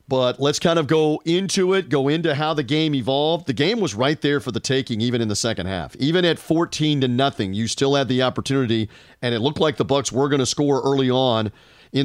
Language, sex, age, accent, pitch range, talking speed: English, male, 40-59, American, 130-155 Hz, 245 wpm